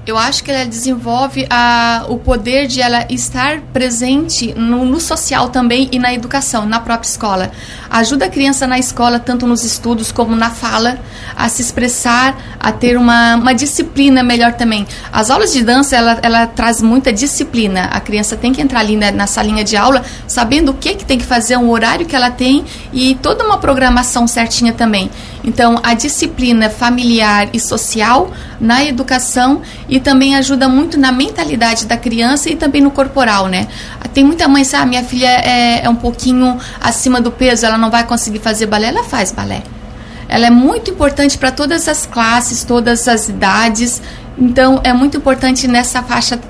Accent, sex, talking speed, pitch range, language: Brazilian, female, 180 wpm, 230-265 Hz, Portuguese